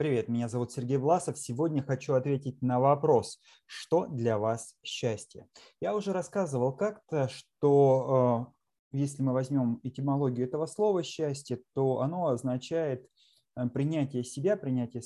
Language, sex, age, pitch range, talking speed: Russian, male, 20-39, 120-145 Hz, 130 wpm